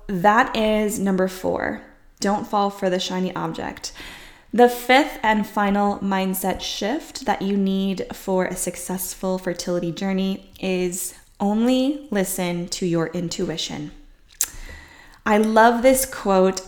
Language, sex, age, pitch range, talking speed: English, female, 10-29, 185-245 Hz, 120 wpm